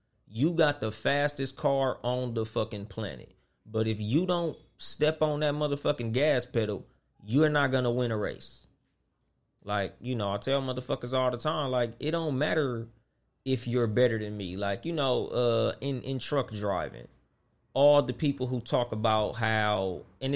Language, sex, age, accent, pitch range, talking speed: English, male, 30-49, American, 110-145 Hz, 175 wpm